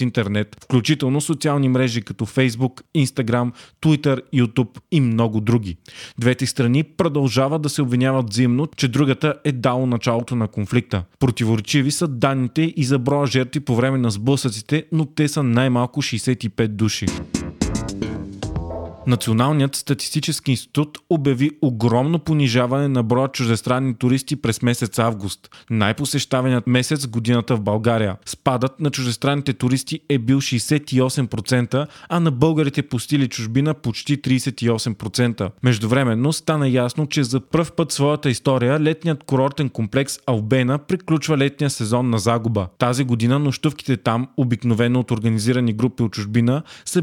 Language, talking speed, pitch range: Bulgarian, 135 wpm, 120-145 Hz